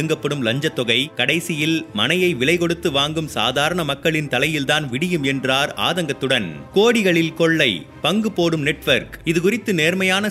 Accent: native